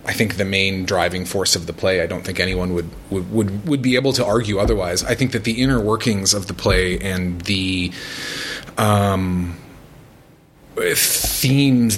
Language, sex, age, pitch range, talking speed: English, male, 30-49, 95-120 Hz, 175 wpm